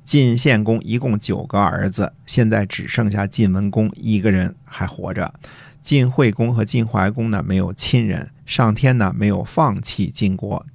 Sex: male